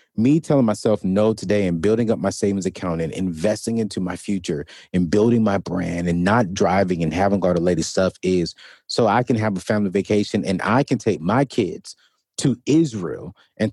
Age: 30-49